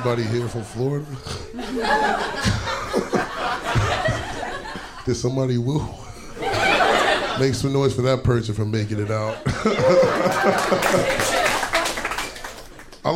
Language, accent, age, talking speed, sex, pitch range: English, American, 30-49, 80 wpm, male, 110-130 Hz